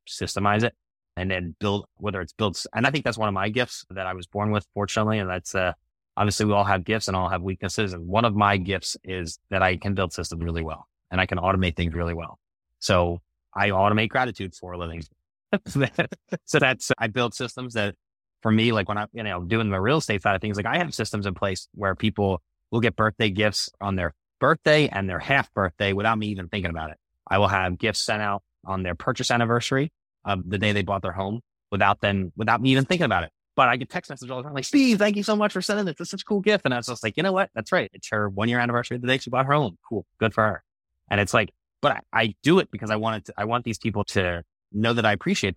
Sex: male